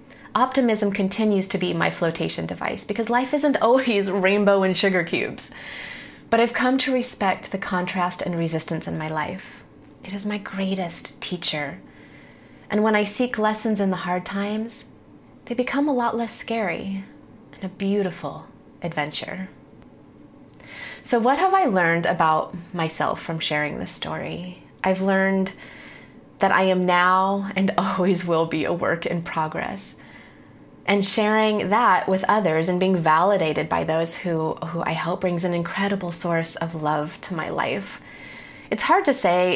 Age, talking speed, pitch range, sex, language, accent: 30-49, 155 wpm, 170-225 Hz, female, English, American